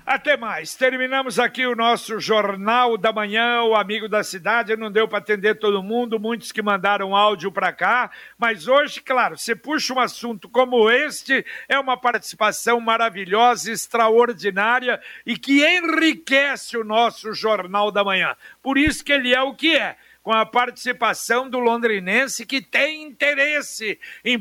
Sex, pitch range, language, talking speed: male, 215-250 Hz, Portuguese, 155 wpm